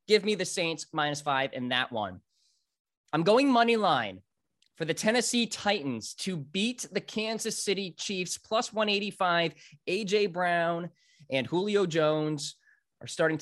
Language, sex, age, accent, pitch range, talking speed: English, male, 20-39, American, 130-185 Hz, 145 wpm